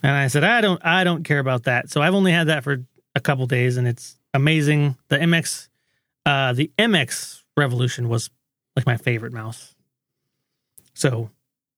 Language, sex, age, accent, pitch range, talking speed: English, male, 30-49, American, 135-170 Hz, 180 wpm